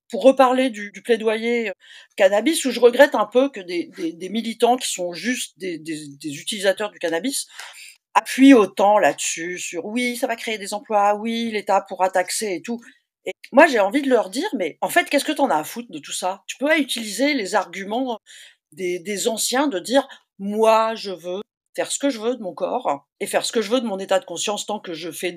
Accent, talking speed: French, 235 wpm